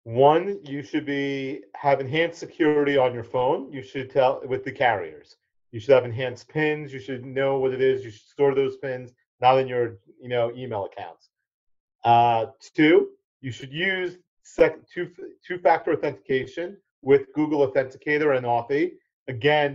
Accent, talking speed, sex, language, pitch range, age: American, 165 wpm, male, English, 130-165 Hz, 40-59